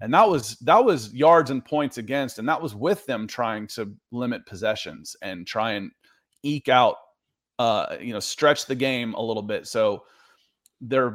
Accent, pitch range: American, 110-135 Hz